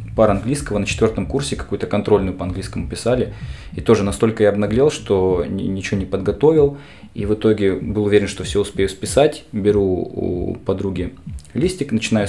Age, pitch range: 20-39, 110-170 Hz